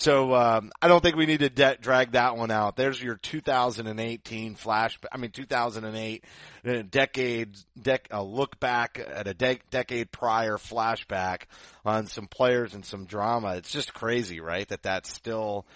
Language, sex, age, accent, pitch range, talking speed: English, male, 30-49, American, 105-130 Hz, 170 wpm